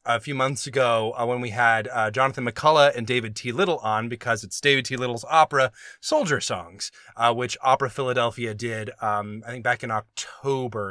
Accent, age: American, 20-39